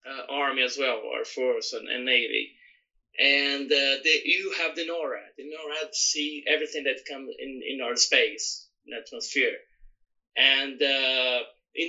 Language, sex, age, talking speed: English, male, 20-39, 160 wpm